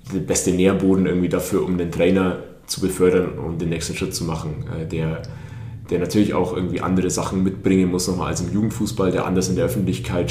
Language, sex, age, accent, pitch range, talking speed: German, male, 30-49, German, 85-100 Hz, 205 wpm